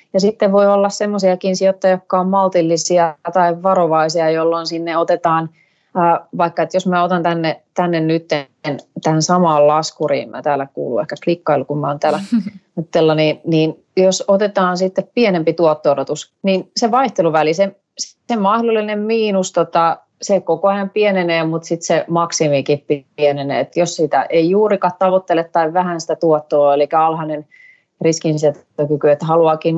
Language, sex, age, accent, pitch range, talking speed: Finnish, female, 30-49, native, 155-190 Hz, 145 wpm